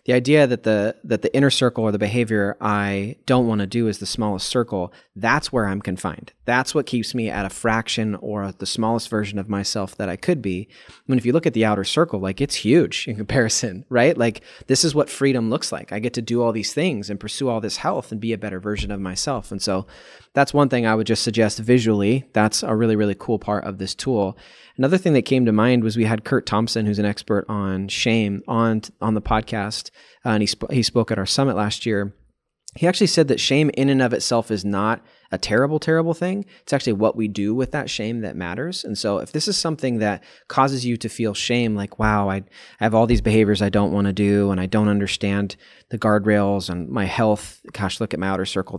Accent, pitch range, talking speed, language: American, 100-125 Hz, 245 wpm, English